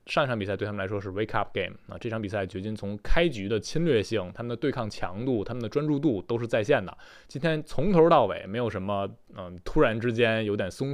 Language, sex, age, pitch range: Chinese, male, 20-39, 95-120 Hz